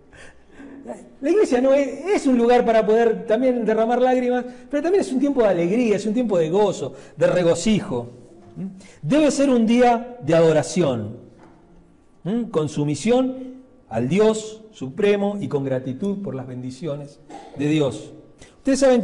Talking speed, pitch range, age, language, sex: 150 wpm, 165-240 Hz, 40-59, Spanish, male